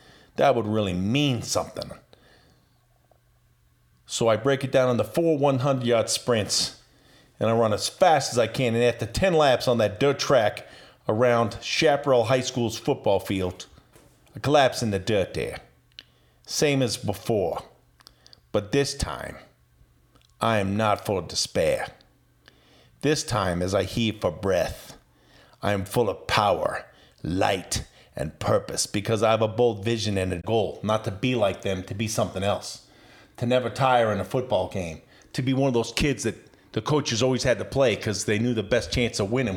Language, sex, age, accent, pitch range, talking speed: English, male, 50-69, American, 105-135 Hz, 175 wpm